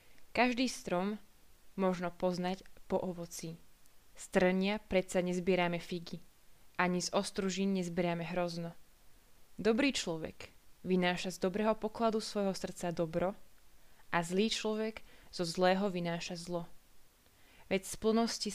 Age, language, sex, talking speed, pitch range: 20-39, Slovak, female, 110 wpm, 175-205 Hz